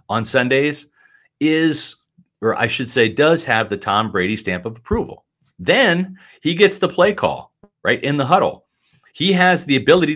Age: 40-59